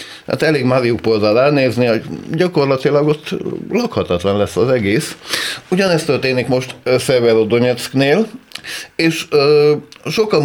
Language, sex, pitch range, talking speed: Hungarian, male, 110-155 Hz, 100 wpm